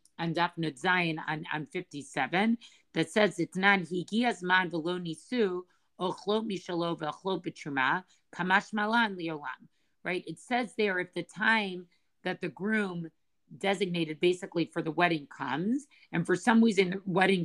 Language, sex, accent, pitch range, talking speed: English, female, American, 170-210 Hz, 120 wpm